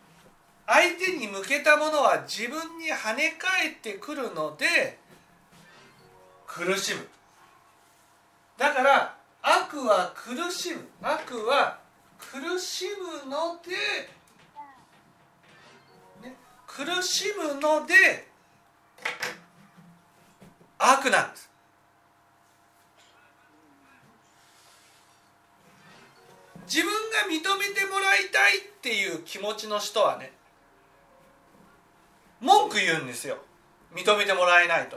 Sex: male